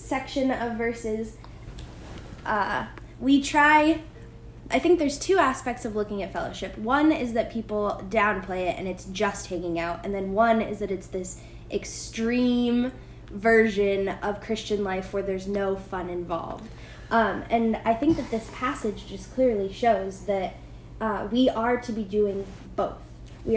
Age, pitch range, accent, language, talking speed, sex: 10-29, 205-245 Hz, American, English, 160 wpm, female